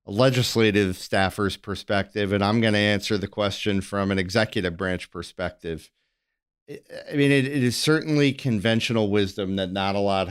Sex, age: male, 40-59